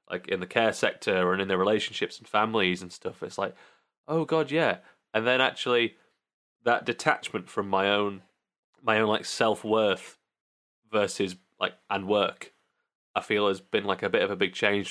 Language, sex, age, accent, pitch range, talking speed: English, male, 20-39, British, 90-110 Hz, 180 wpm